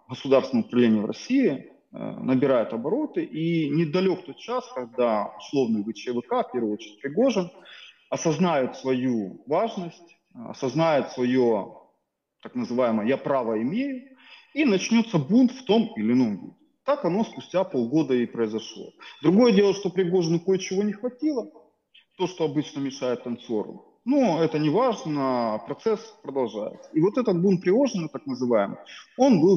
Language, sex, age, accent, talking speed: Russian, male, 30-49, native, 140 wpm